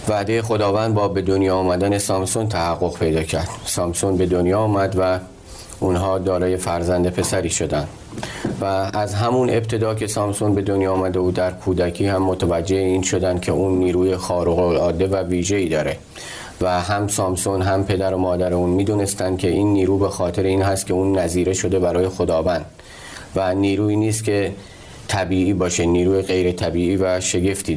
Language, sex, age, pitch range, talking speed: Persian, male, 30-49, 90-100 Hz, 170 wpm